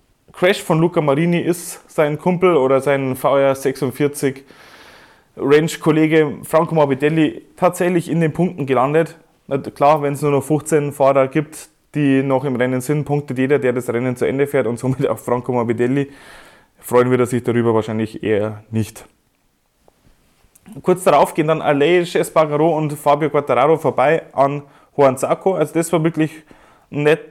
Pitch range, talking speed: 130-155 Hz, 150 wpm